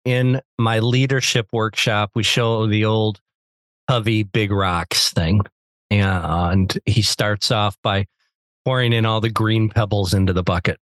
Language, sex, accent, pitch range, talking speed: English, male, American, 95-115 Hz, 145 wpm